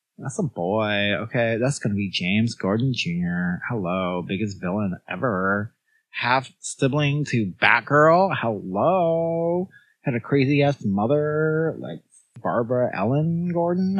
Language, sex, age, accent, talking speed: English, male, 30-49, American, 120 wpm